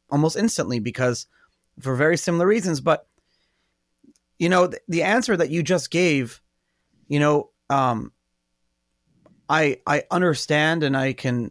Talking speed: 135 wpm